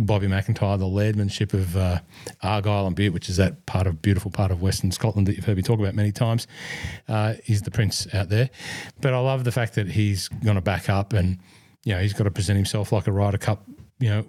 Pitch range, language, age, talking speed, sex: 100-120 Hz, English, 30-49, 245 wpm, male